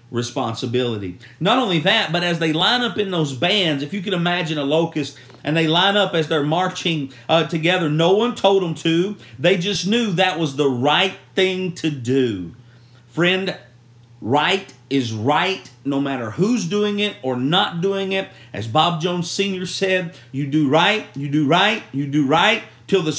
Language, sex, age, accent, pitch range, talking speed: English, male, 50-69, American, 135-185 Hz, 185 wpm